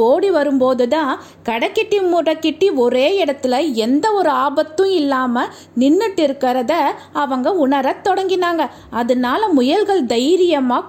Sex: female